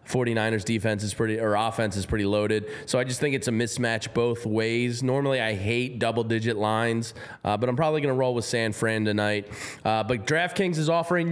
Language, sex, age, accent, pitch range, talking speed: English, male, 20-39, American, 120-160 Hz, 210 wpm